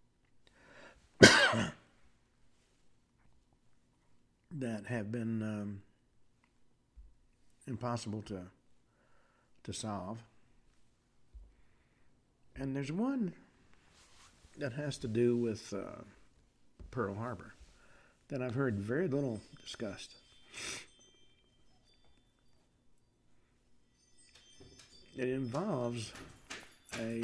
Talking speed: 60 wpm